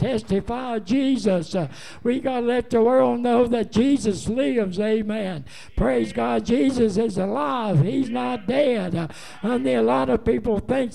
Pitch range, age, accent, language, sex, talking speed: 195-250 Hz, 60-79, American, English, male, 170 wpm